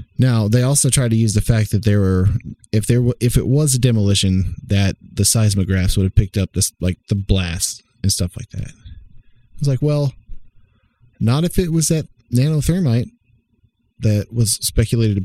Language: English